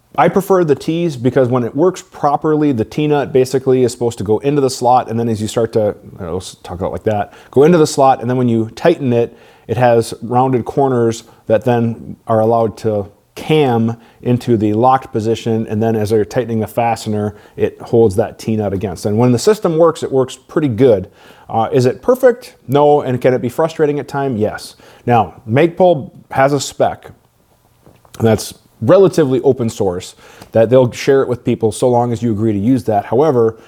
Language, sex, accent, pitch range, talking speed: English, male, American, 110-135 Hz, 210 wpm